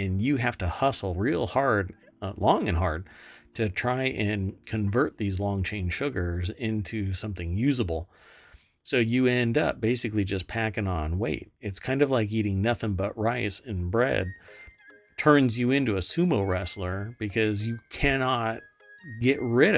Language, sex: English, male